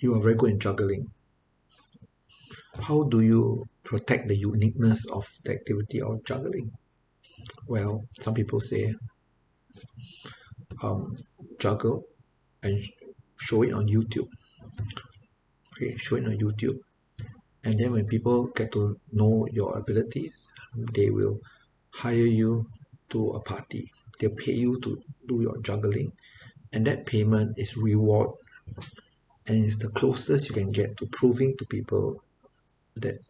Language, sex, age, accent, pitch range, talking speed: English, male, 50-69, Malaysian, 110-130 Hz, 130 wpm